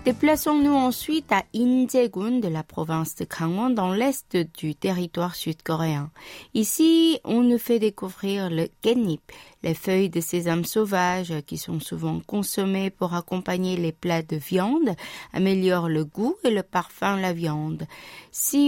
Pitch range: 170-240 Hz